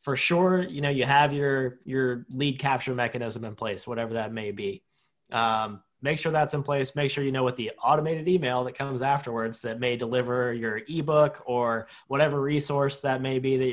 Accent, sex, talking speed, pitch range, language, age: American, male, 200 wpm, 120-140 Hz, English, 20-39